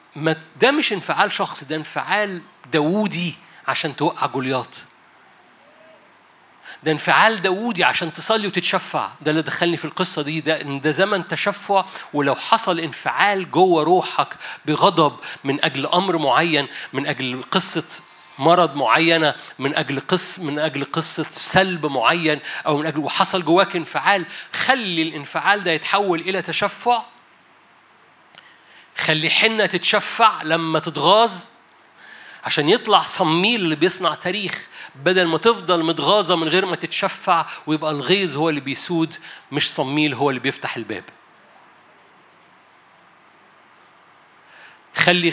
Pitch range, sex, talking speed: 155-195 Hz, male, 125 wpm